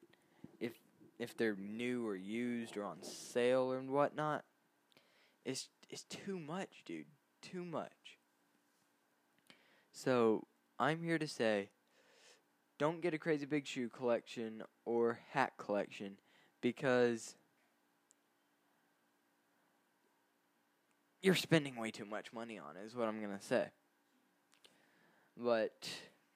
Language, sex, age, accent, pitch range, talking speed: English, male, 10-29, American, 105-145 Hz, 110 wpm